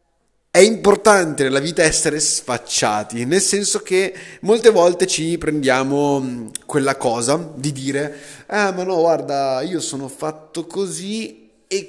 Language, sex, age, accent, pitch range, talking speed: Italian, male, 30-49, native, 135-185 Hz, 130 wpm